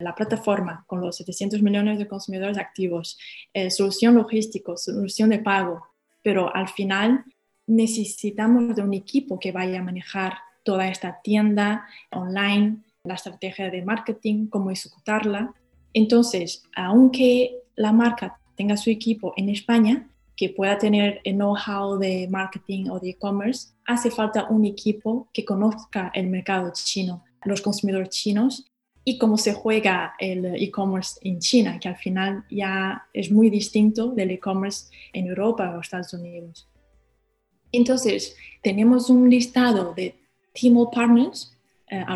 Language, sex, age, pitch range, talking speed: Spanish, female, 20-39, 190-225 Hz, 140 wpm